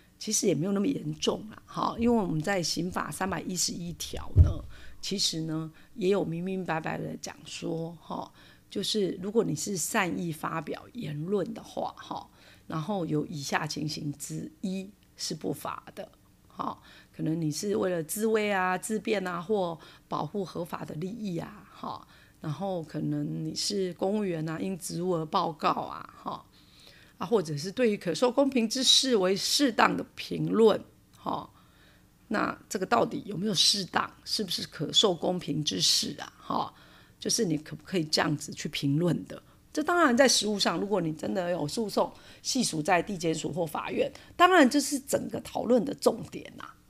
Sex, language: female, Chinese